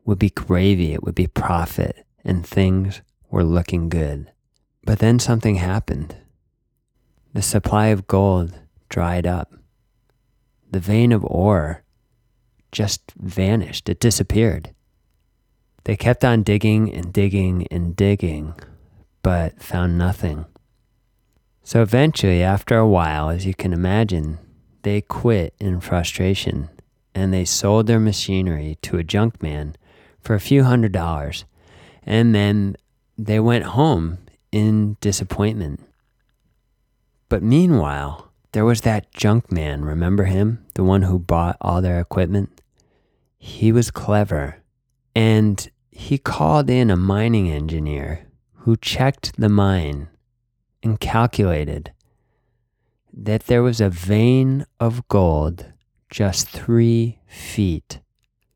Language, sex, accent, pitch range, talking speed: English, male, American, 85-115 Hz, 120 wpm